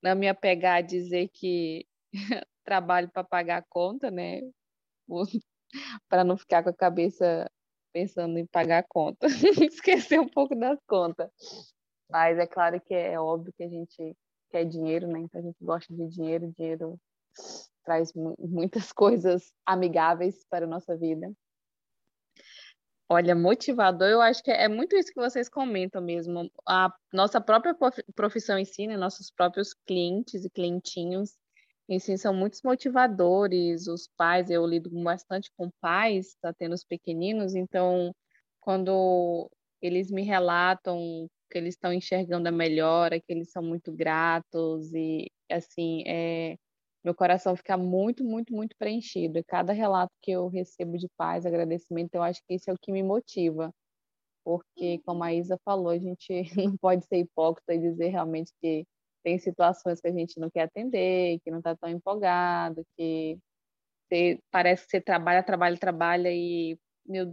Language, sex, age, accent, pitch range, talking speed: Portuguese, female, 20-39, Brazilian, 170-195 Hz, 155 wpm